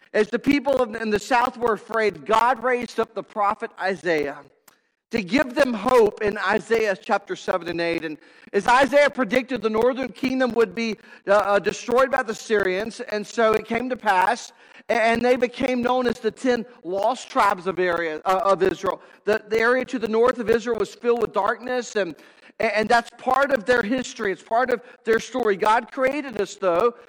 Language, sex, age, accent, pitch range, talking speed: English, male, 50-69, American, 205-250 Hz, 190 wpm